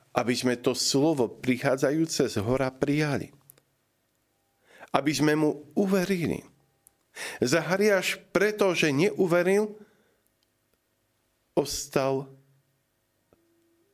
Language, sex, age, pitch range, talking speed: Slovak, male, 50-69, 110-145 Hz, 75 wpm